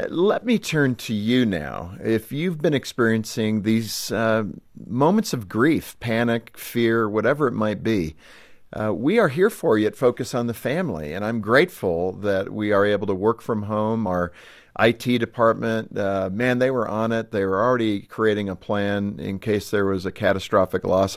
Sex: male